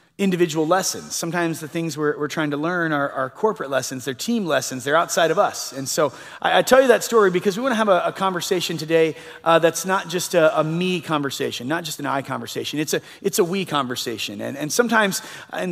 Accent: American